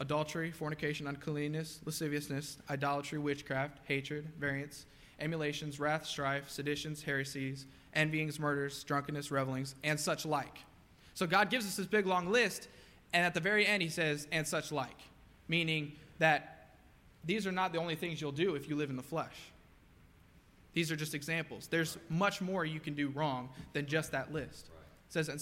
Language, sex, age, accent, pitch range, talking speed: English, male, 20-39, American, 140-165 Hz, 170 wpm